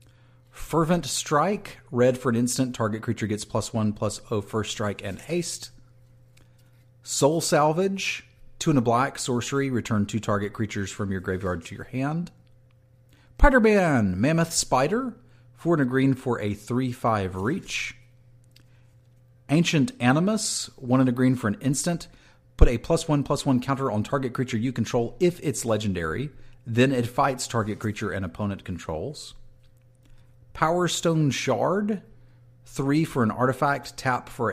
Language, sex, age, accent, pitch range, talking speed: English, male, 40-59, American, 115-140 Hz, 150 wpm